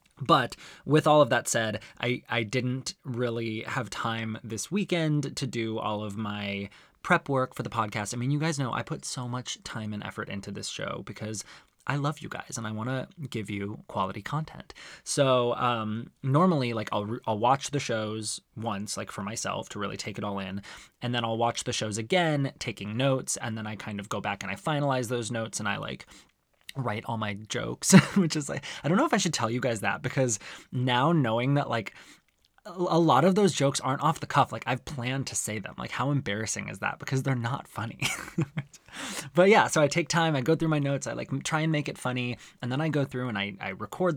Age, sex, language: 20-39, male, English